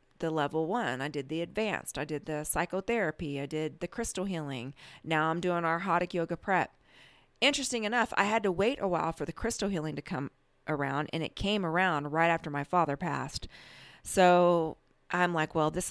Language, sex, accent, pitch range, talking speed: English, female, American, 155-190 Hz, 195 wpm